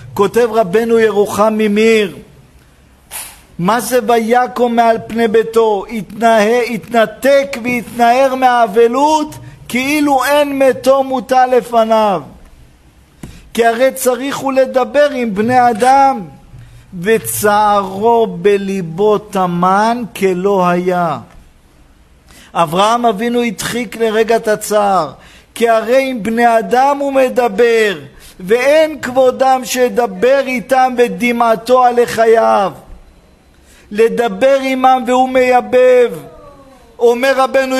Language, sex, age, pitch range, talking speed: Hebrew, male, 50-69, 210-255 Hz, 90 wpm